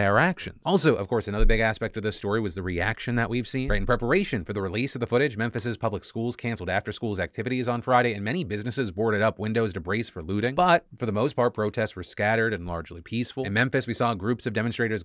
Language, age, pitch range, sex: English, 30-49, 100-115 Hz, male